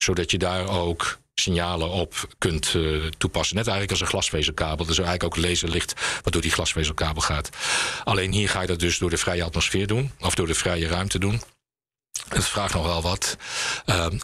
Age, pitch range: 50-69, 85-100 Hz